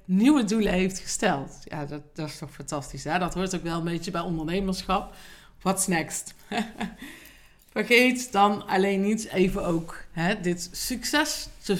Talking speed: 155 wpm